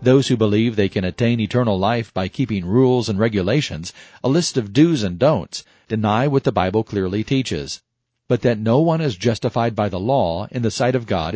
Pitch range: 105-130 Hz